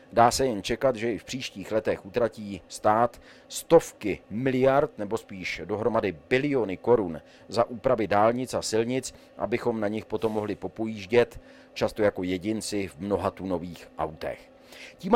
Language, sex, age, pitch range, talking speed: Czech, male, 40-59, 110-140 Hz, 145 wpm